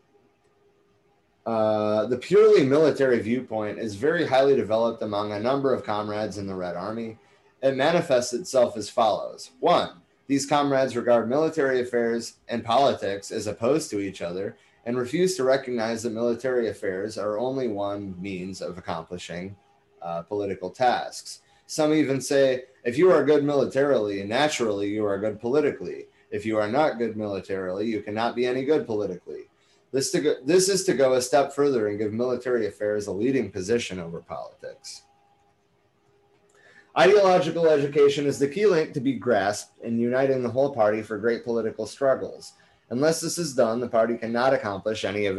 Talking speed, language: 160 wpm, English